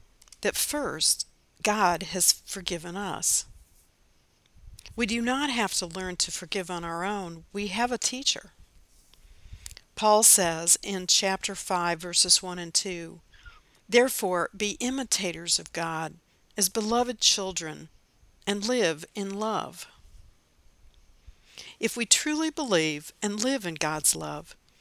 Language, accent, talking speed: English, American, 125 wpm